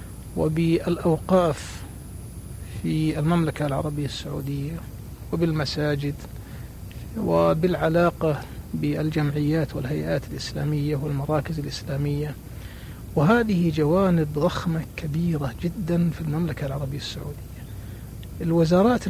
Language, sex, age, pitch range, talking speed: Arabic, male, 60-79, 120-175 Hz, 70 wpm